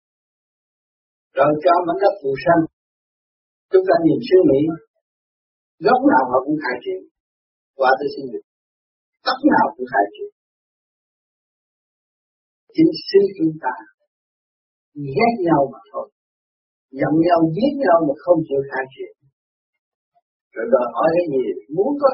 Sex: male